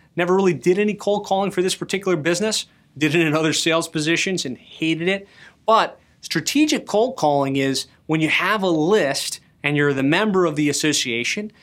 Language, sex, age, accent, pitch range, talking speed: English, male, 30-49, American, 150-180 Hz, 185 wpm